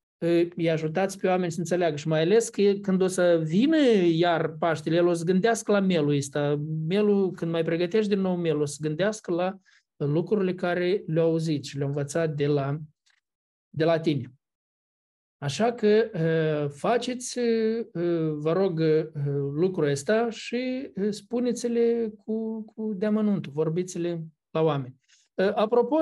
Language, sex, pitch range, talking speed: Romanian, male, 150-210 Hz, 145 wpm